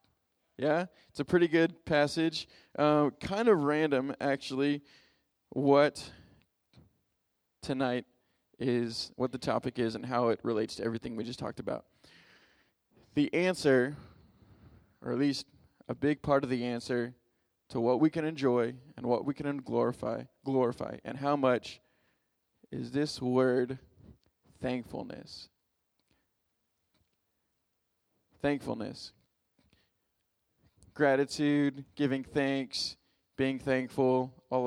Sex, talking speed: male, 110 wpm